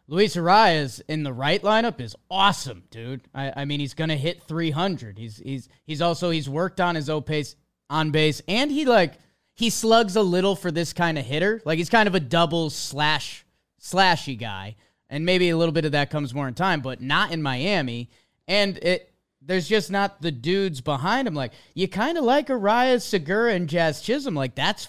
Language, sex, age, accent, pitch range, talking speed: English, male, 20-39, American, 145-195 Hz, 205 wpm